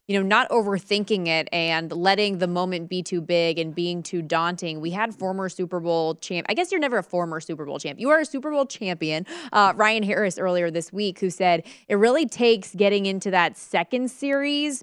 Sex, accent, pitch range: female, American, 175-225 Hz